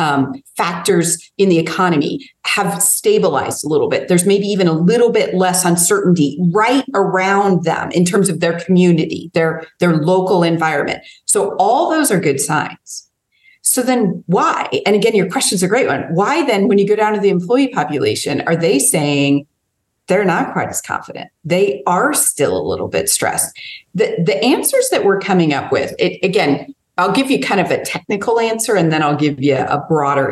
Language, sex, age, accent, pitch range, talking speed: English, female, 40-59, American, 160-220 Hz, 190 wpm